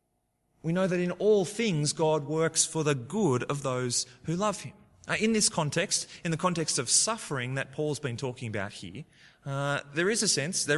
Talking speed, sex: 200 wpm, male